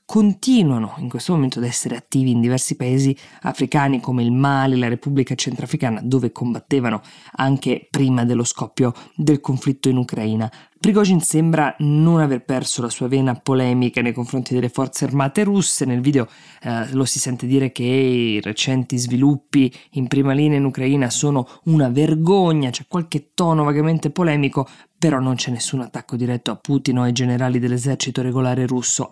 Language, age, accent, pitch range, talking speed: Italian, 20-39, native, 125-145 Hz, 170 wpm